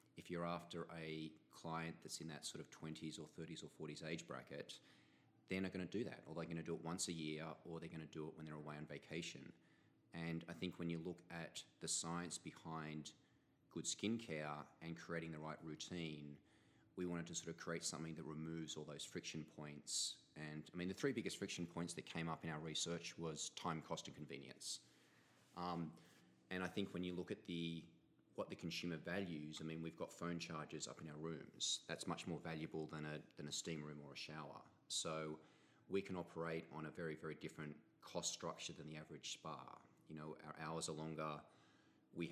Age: 30-49